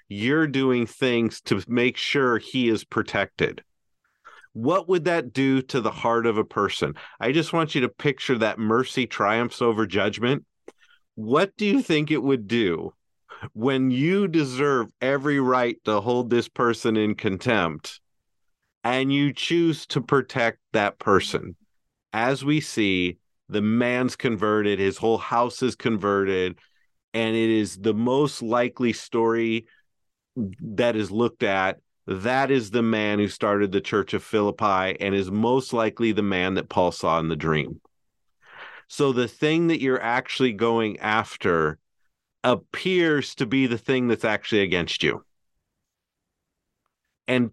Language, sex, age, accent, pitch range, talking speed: English, male, 40-59, American, 110-130 Hz, 150 wpm